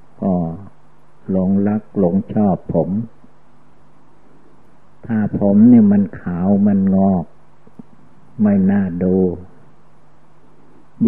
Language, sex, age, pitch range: Thai, male, 60-79, 90-110 Hz